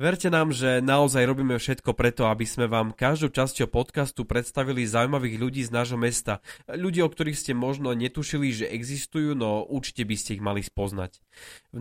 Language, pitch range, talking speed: Slovak, 110-150 Hz, 180 wpm